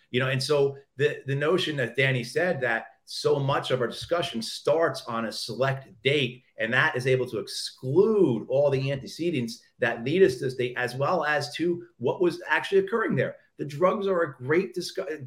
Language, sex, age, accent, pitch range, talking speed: English, male, 40-59, American, 130-180 Hz, 200 wpm